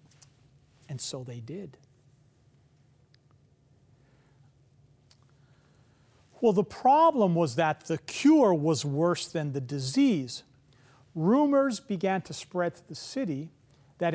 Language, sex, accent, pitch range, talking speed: English, male, American, 135-205 Hz, 100 wpm